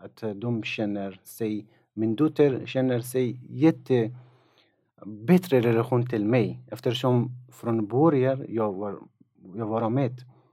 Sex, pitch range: male, 115-135 Hz